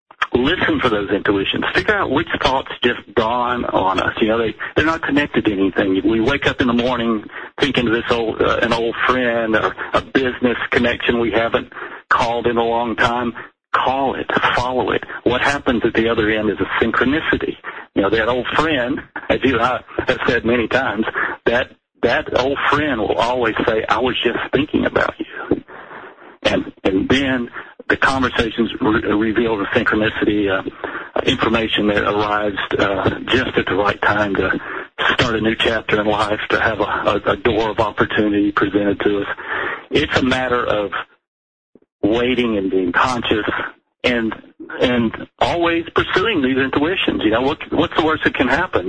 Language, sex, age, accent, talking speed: English, male, 60-79, American, 175 wpm